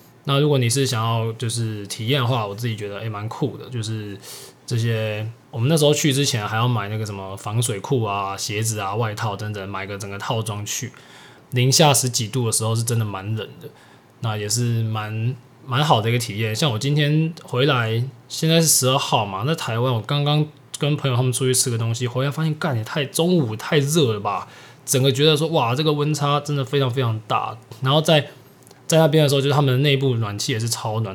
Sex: male